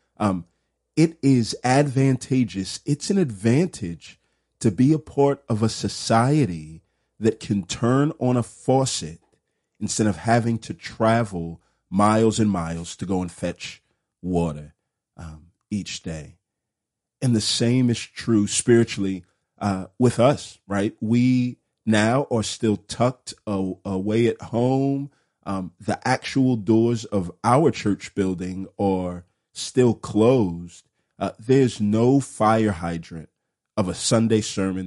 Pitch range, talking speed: 100-130 Hz, 125 wpm